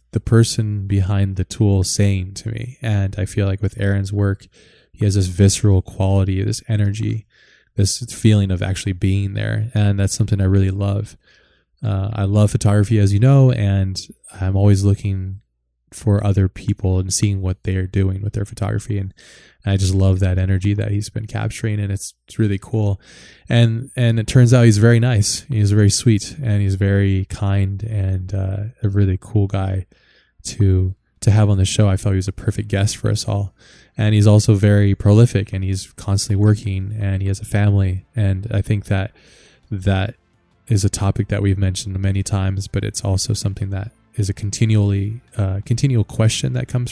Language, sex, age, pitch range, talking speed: English, male, 20-39, 95-110 Hz, 190 wpm